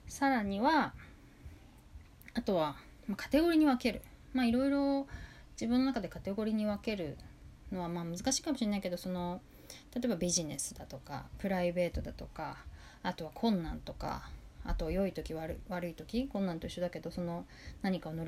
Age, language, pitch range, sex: 20-39, Japanese, 175-255 Hz, female